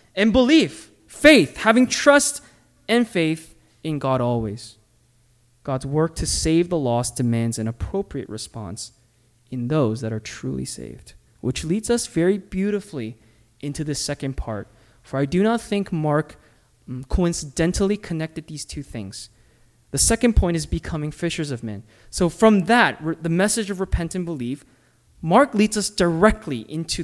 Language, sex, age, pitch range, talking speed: English, male, 20-39, 125-205 Hz, 150 wpm